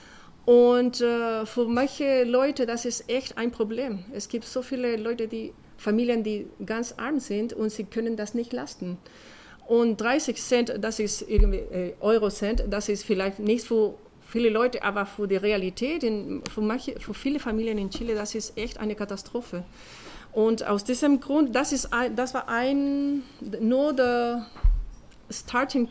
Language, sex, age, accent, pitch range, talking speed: German, female, 40-59, German, 215-250 Hz, 165 wpm